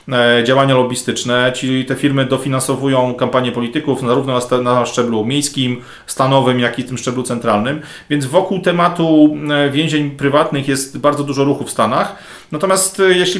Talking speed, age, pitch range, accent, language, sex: 145 wpm, 40-59, 125-145 Hz, native, Polish, male